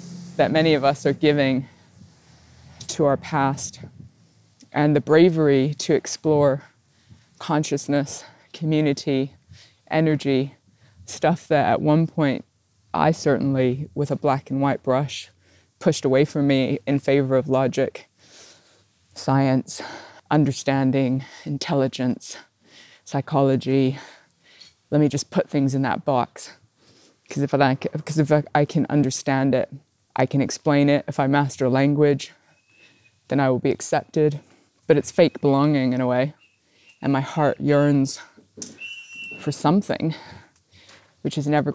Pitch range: 135-155 Hz